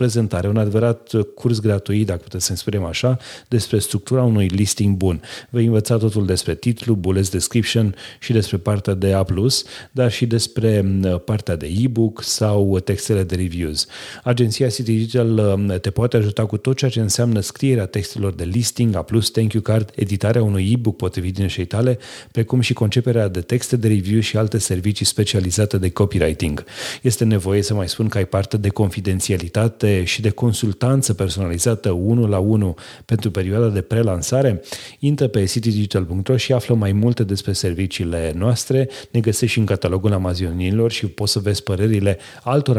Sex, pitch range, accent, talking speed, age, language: male, 100-115 Hz, native, 165 wpm, 30-49, Romanian